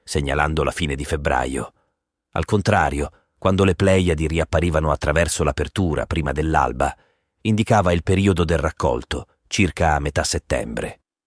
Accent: native